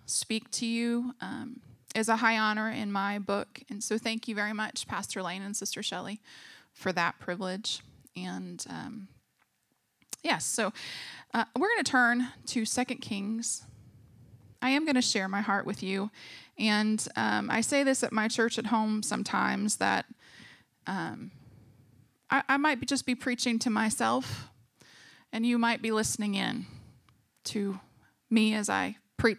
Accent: American